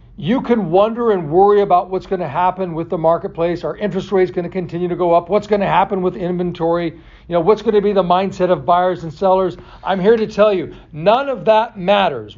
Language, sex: English, male